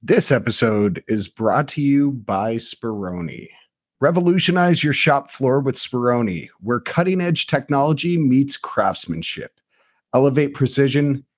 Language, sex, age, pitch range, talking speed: English, male, 40-59, 115-165 Hz, 110 wpm